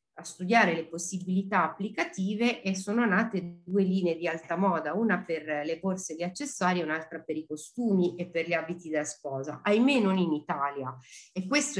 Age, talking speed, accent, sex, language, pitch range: 40-59, 180 wpm, native, female, Italian, 160-205 Hz